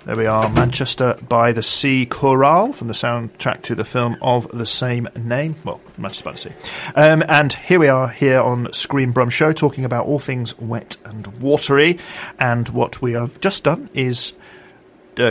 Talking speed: 190 wpm